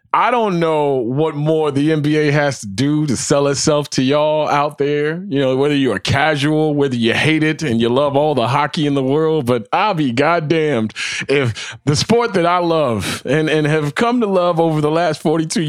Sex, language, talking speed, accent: male, English, 215 wpm, American